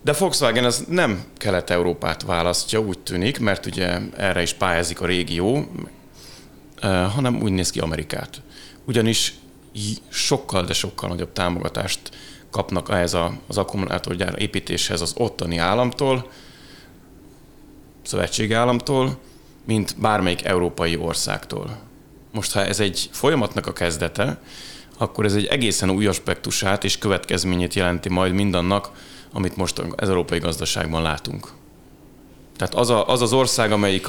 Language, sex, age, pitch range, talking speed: Hungarian, male, 30-49, 90-115 Hz, 125 wpm